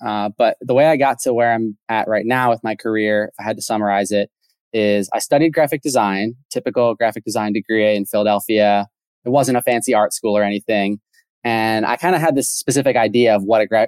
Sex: male